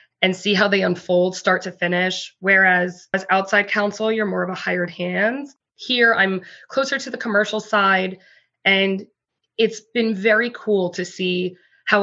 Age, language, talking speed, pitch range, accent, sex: 20-39, English, 165 wpm, 180-215 Hz, American, female